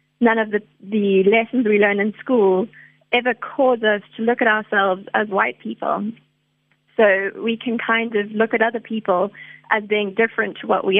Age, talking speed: 20-39, 185 wpm